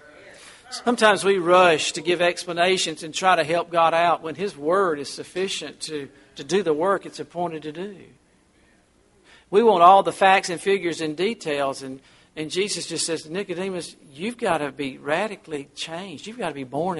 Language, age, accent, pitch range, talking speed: English, 50-69, American, 145-185 Hz, 185 wpm